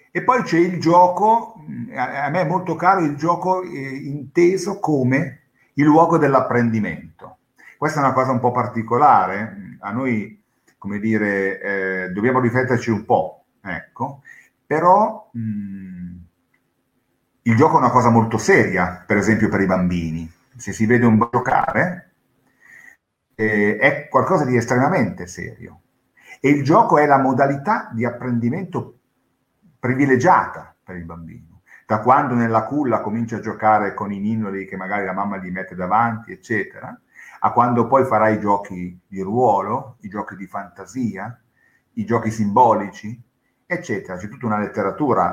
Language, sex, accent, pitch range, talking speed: Italian, male, native, 100-145 Hz, 145 wpm